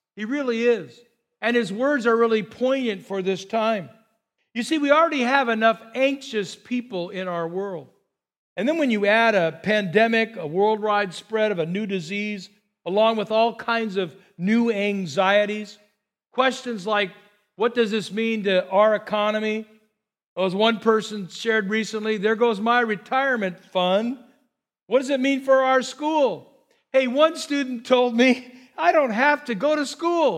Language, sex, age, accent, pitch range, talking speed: English, male, 50-69, American, 210-265 Hz, 160 wpm